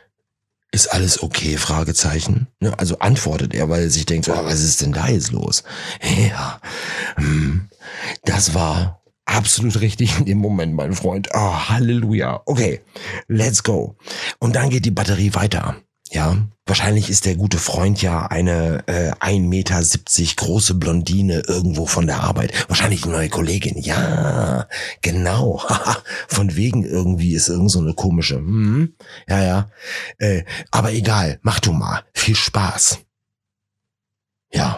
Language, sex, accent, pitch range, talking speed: German, male, German, 85-105 Hz, 140 wpm